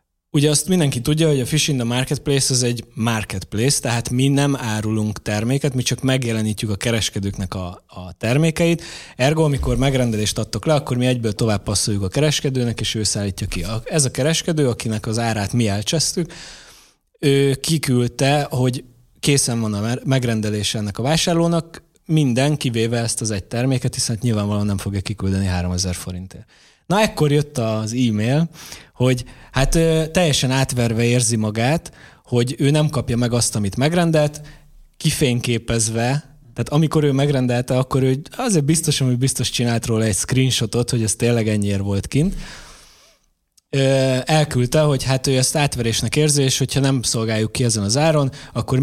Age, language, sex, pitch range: 20-39, Hungarian, male, 110-140 Hz